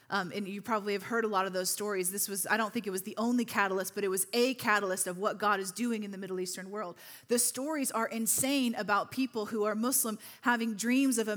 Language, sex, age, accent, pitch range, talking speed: English, female, 30-49, American, 205-250 Hz, 260 wpm